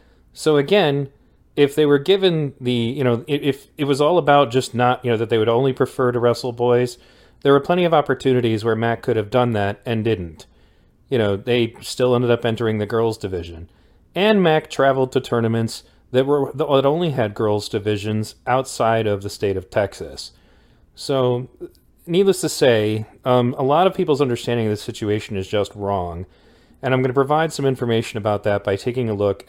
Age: 40-59